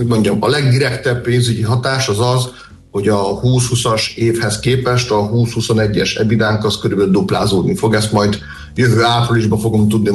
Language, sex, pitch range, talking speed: Hungarian, male, 105-125 Hz, 150 wpm